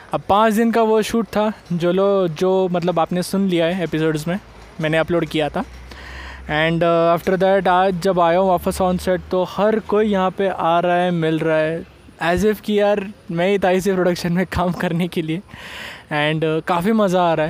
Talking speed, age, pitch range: 200 wpm, 20-39, 160-190 Hz